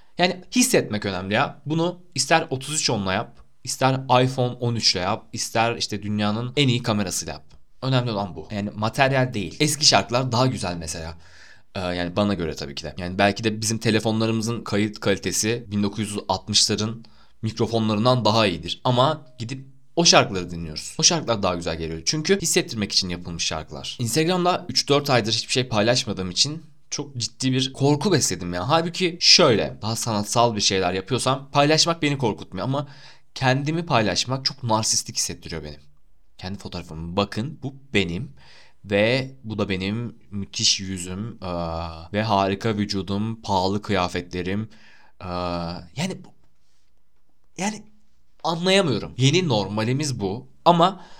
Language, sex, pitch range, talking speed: Turkish, male, 95-135 Hz, 140 wpm